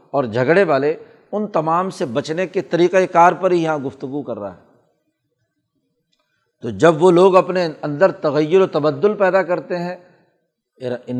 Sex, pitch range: male, 150-180 Hz